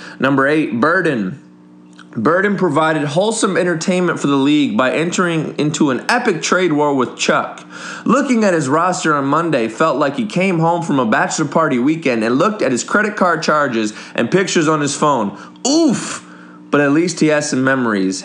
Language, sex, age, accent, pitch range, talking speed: English, male, 20-39, American, 120-170 Hz, 180 wpm